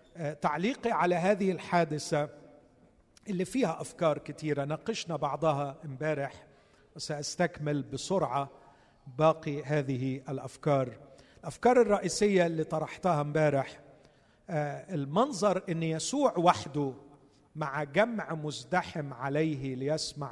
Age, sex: 50-69, male